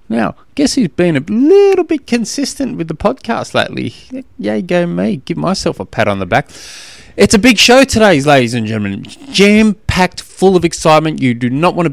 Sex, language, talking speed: male, English, 195 wpm